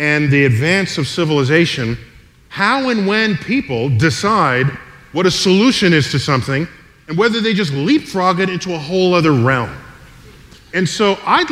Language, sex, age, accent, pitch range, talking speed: English, male, 40-59, American, 160-225 Hz, 155 wpm